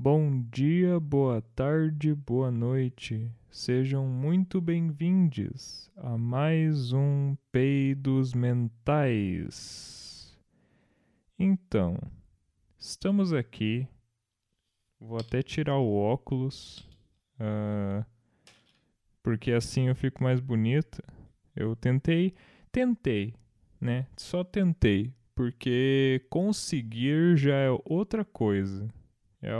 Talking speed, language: 85 wpm, Portuguese